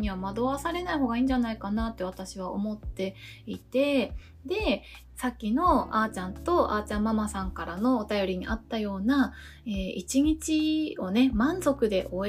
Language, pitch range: Japanese, 205-285 Hz